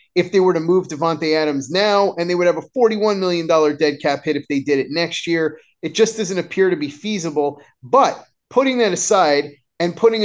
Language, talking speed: English, 215 wpm